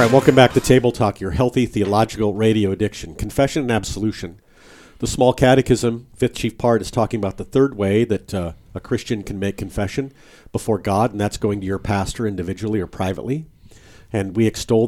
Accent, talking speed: American, 195 wpm